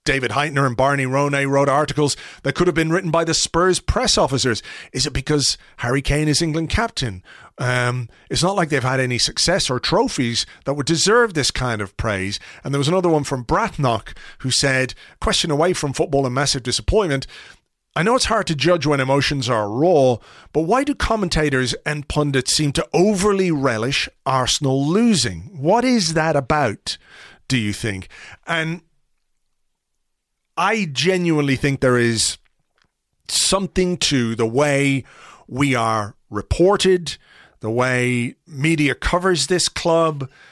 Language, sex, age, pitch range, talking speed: English, male, 40-59, 125-165 Hz, 155 wpm